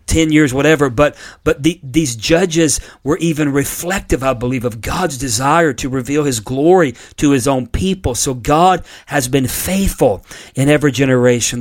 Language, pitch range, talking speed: English, 120-150 Hz, 165 wpm